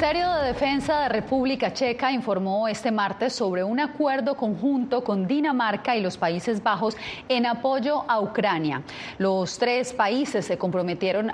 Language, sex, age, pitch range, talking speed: Spanish, female, 30-49, 190-245 Hz, 155 wpm